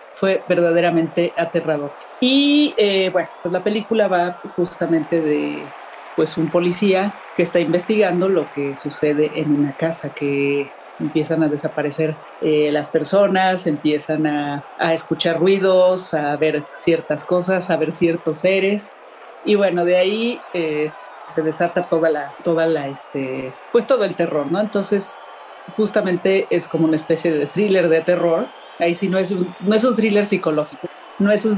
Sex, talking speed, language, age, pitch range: female, 160 wpm, Spanish, 40-59, 155-195 Hz